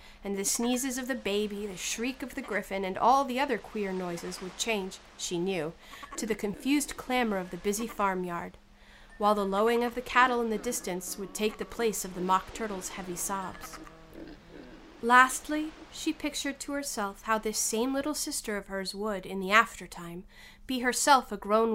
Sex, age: female, 40-59